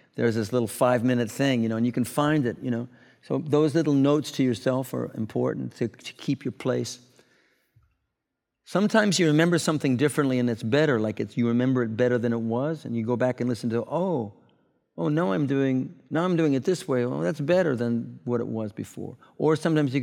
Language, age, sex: English, 50-69, male